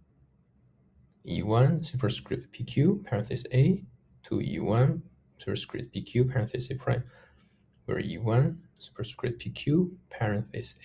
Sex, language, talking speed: male, English, 95 wpm